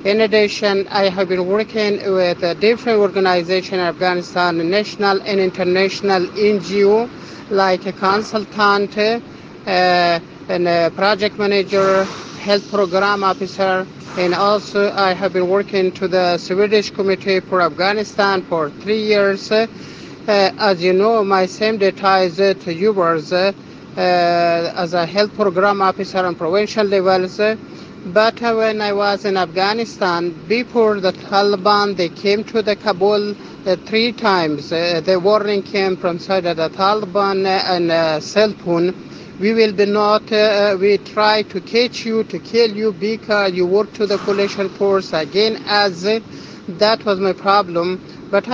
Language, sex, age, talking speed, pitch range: Italian, male, 50-69, 145 wpm, 185-210 Hz